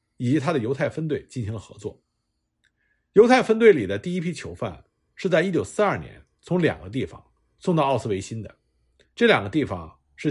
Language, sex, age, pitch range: Chinese, male, 50-69, 110-185 Hz